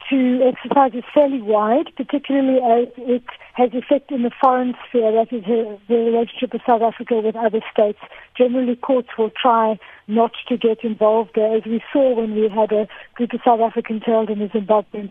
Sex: female